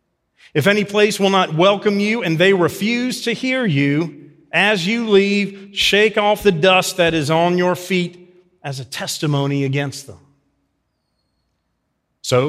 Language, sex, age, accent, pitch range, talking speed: English, male, 40-59, American, 150-195 Hz, 150 wpm